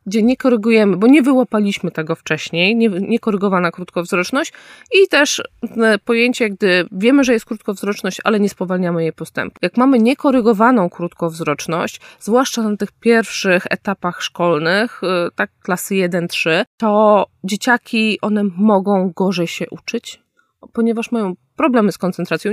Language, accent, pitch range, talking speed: Polish, native, 180-230 Hz, 130 wpm